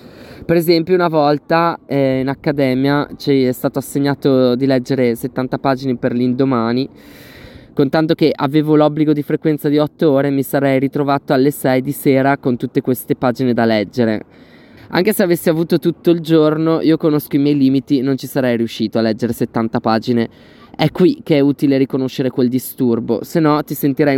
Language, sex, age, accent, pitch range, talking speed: Italian, male, 20-39, native, 125-150 Hz, 175 wpm